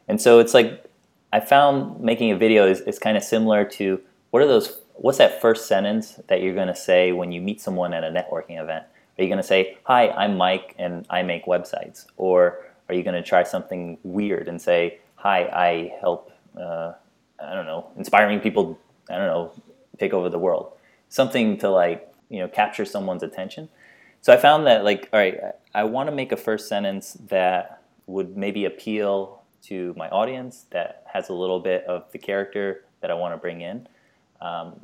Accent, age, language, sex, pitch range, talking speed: American, 20-39, English, male, 90-100 Hz, 200 wpm